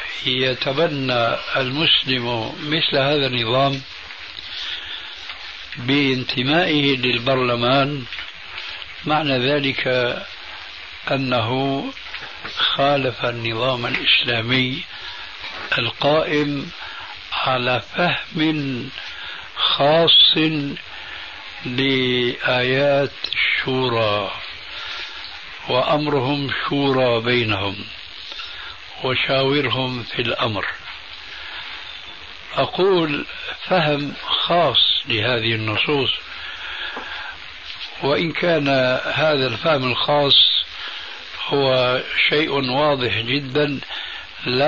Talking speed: 55 wpm